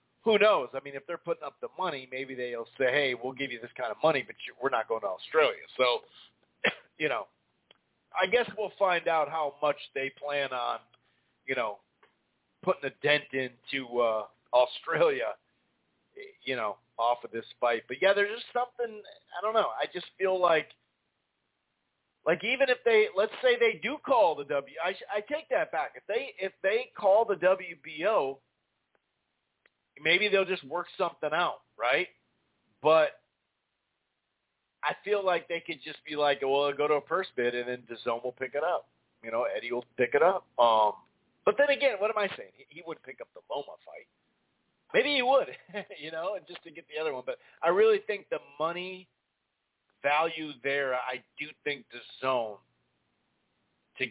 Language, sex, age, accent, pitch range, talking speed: English, male, 40-59, American, 130-210 Hz, 190 wpm